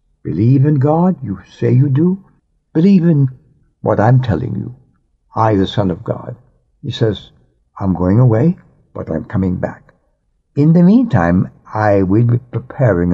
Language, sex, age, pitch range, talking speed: English, male, 60-79, 90-135 Hz, 155 wpm